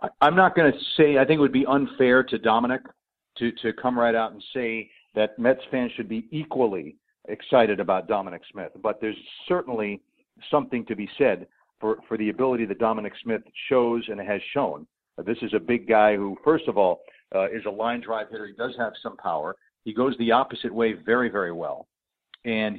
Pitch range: 105-120 Hz